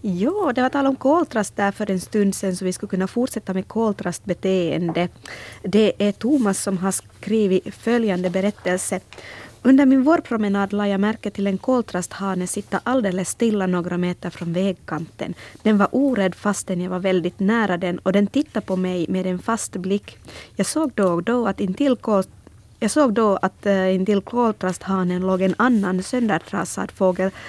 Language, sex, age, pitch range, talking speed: Swedish, female, 20-39, 185-220 Hz, 175 wpm